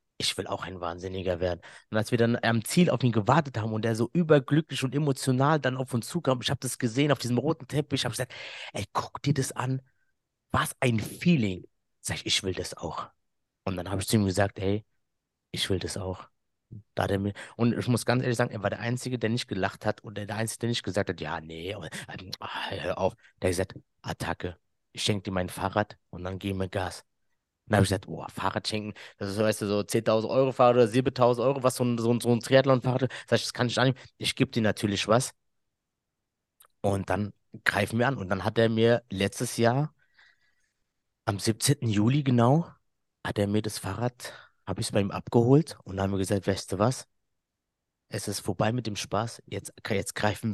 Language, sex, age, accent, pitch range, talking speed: German, male, 30-49, German, 100-125 Hz, 215 wpm